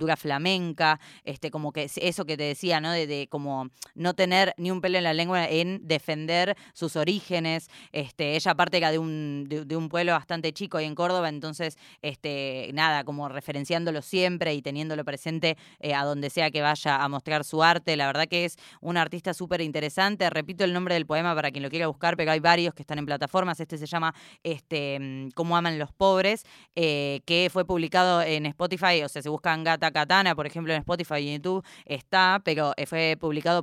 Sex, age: female, 20-39